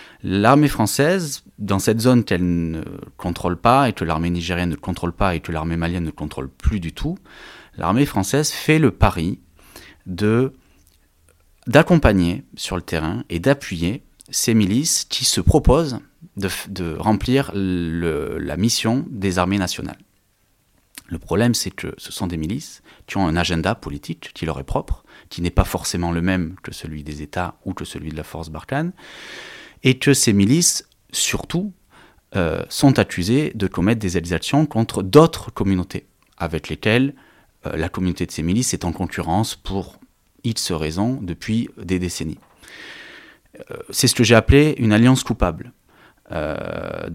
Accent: French